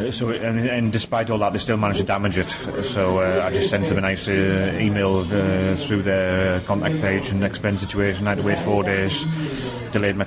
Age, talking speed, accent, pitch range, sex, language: 30-49, 220 wpm, British, 100-115 Hz, male, English